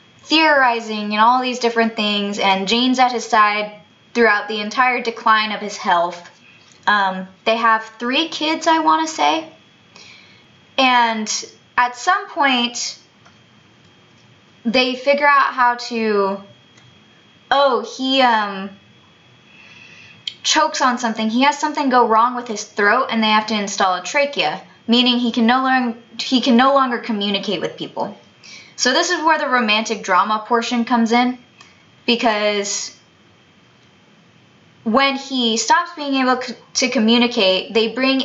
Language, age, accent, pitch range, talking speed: English, 20-39, American, 215-260 Hz, 135 wpm